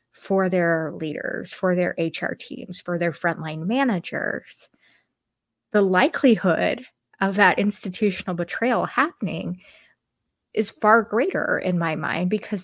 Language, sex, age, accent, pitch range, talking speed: English, female, 20-39, American, 175-215 Hz, 120 wpm